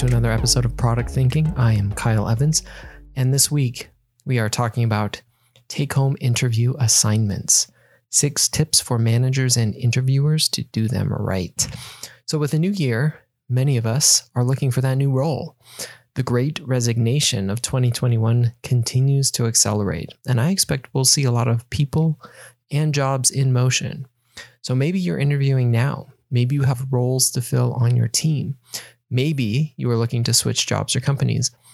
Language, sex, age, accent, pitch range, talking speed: English, male, 20-39, American, 120-135 Hz, 165 wpm